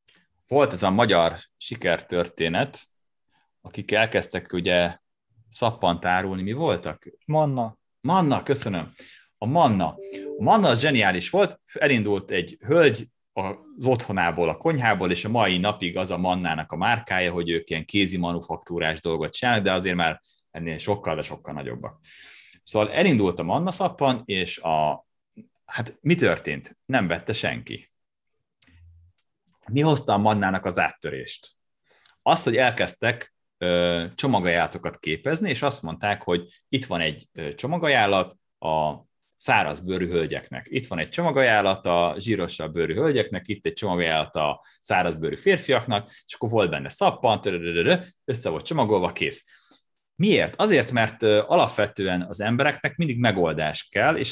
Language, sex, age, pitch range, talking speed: Hungarian, male, 30-49, 85-125 Hz, 135 wpm